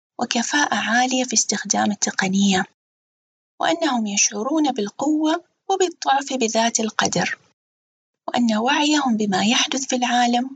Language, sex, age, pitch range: Arabic, female, 20-39, 210-270 Hz